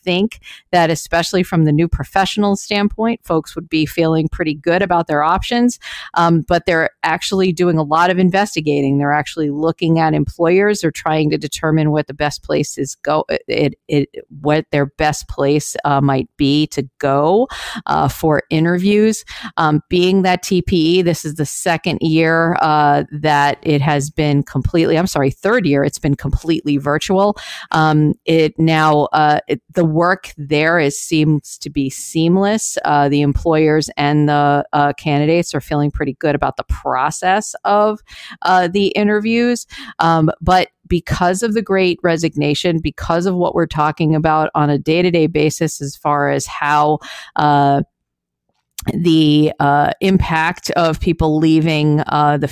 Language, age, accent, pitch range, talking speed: English, 40-59, American, 145-175 Hz, 160 wpm